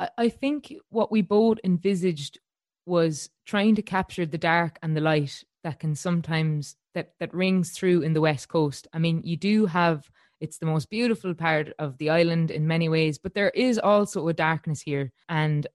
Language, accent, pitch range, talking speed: English, Irish, 155-180 Hz, 190 wpm